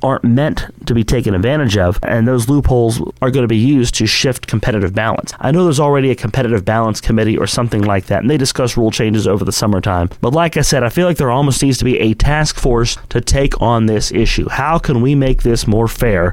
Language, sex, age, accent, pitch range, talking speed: English, male, 30-49, American, 110-145 Hz, 245 wpm